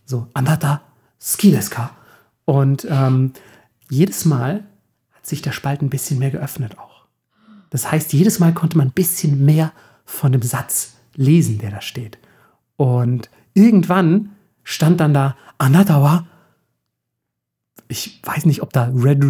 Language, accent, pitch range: German, German, 135-165 Hz